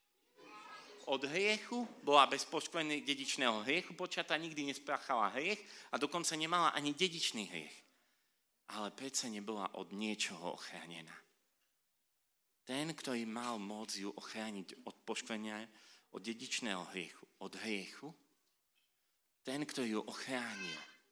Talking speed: 115 wpm